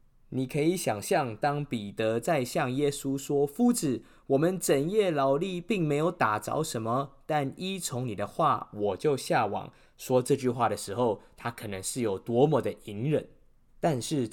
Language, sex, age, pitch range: Chinese, male, 20-39, 120-165 Hz